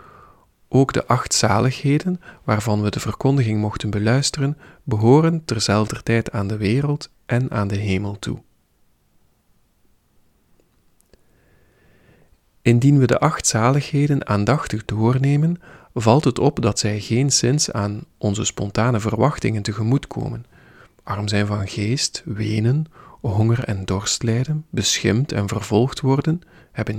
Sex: male